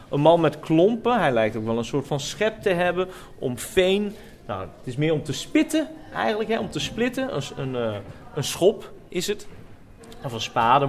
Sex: male